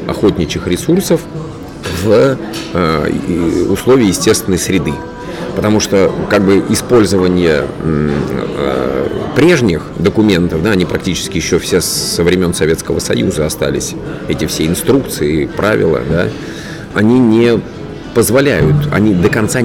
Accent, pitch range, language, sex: native, 85-105 Hz, Russian, male